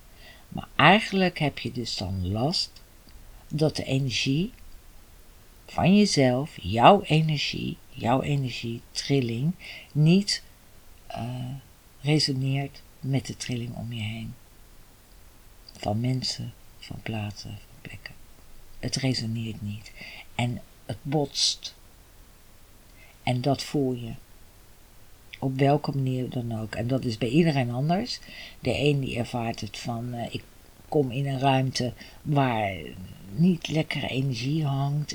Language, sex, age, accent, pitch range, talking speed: Dutch, female, 50-69, Dutch, 110-145 Hz, 120 wpm